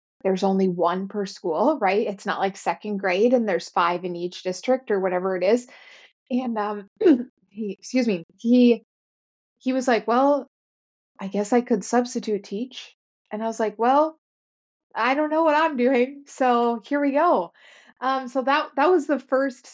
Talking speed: 180 wpm